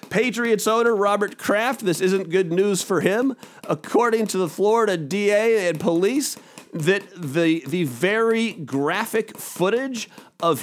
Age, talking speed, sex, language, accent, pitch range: 40-59, 135 wpm, male, English, American, 180-225 Hz